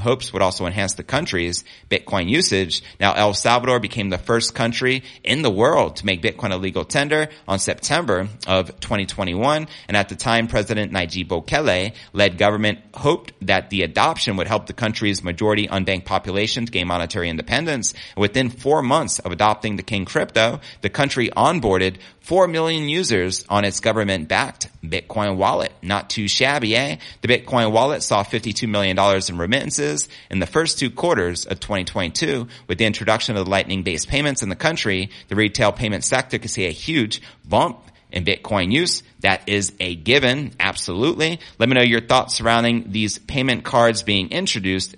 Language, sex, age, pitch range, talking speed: English, male, 30-49, 95-120 Hz, 170 wpm